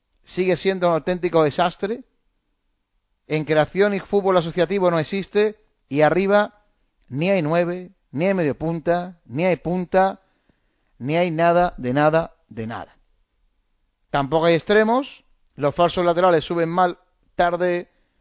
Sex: male